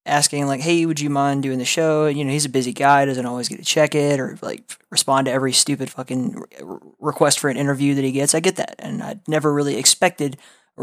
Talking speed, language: 245 wpm, English